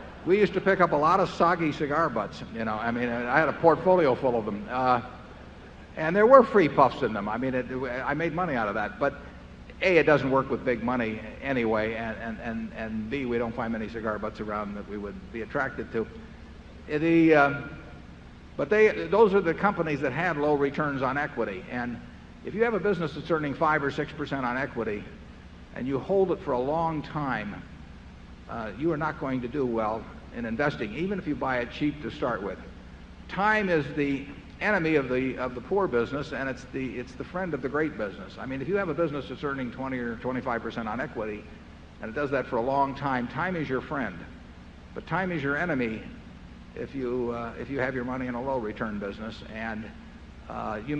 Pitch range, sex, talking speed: 110-150 Hz, male, 220 wpm